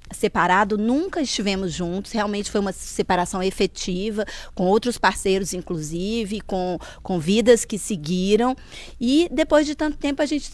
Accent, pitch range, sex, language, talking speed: Brazilian, 190-255 Hz, female, Portuguese, 140 wpm